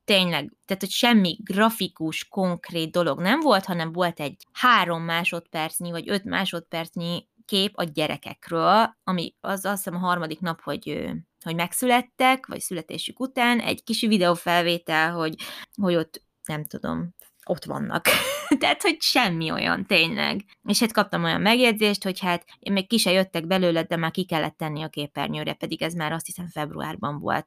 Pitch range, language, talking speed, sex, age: 160-210 Hz, Hungarian, 160 wpm, female, 20-39